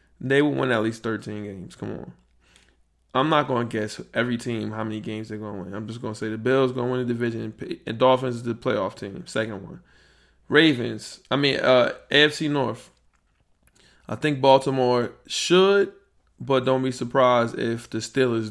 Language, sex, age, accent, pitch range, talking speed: English, male, 20-39, American, 110-130 Hz, 195 wpm